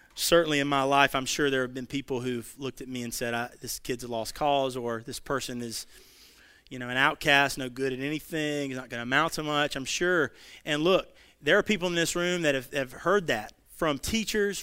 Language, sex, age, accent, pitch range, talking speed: English, male, 30-49, American, 125-155 Hz, 235 wpm